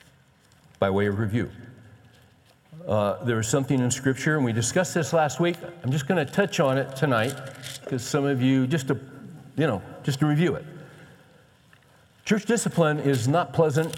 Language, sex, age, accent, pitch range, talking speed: English, male, 60-79, American, 130-160 Hz, 175 wpm